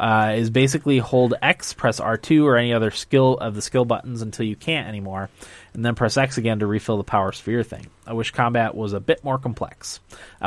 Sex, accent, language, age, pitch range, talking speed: male, American, English, 20-39, 105-130 Hz, 225 wpm